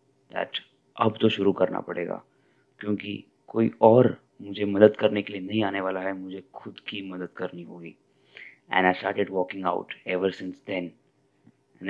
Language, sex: English, male